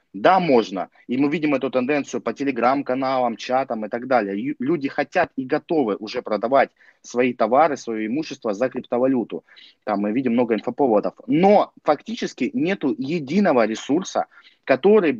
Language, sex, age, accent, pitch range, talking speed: Russian, male, 20-39, native, 120-160 Hz, 140 wpm